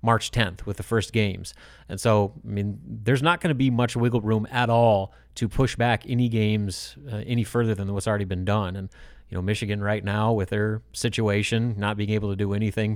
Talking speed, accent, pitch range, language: 220 wpm, American, 100-120 Hz, English